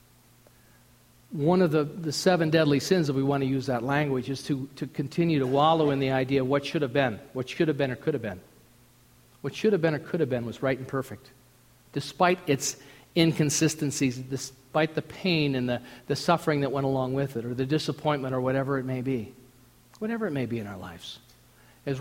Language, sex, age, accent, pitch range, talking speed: English, male, 50-69, American, 120-165 Hz, 215 wpm